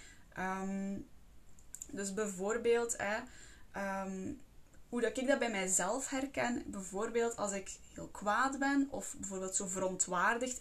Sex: female